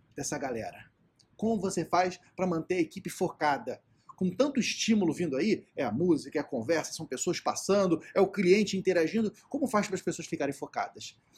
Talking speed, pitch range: 185 wpm, 145-190 Hz